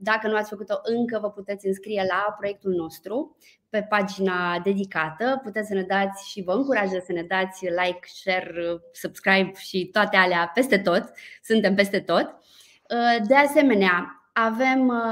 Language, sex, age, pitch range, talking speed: Romanian, female, 20-39, 195-245 Hz, 150 wpm